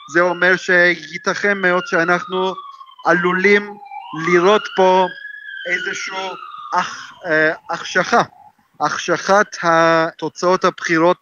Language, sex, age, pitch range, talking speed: Hebrew, male, 30-49, 155-190 Hz, 75 wpm